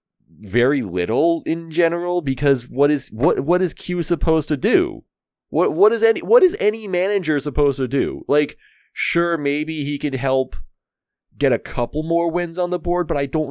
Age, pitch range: 30-49, 125-170 Hz